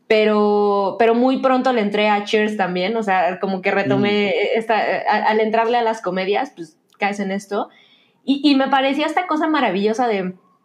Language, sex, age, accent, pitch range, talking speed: Spanish, female, 20-39, Mexican, 200-240 Hz, 180 wpm